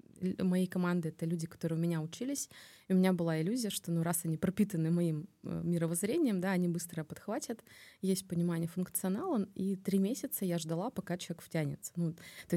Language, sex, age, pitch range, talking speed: Russian, female, 20-39, 170-195 Hz, 185 wpm